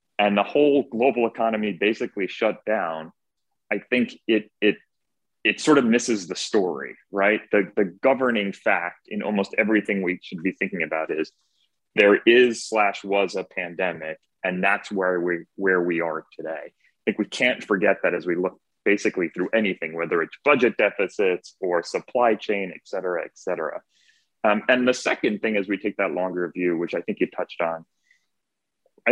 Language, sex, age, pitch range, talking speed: English, male, 30-49, 90-120 Hz, 180 wpm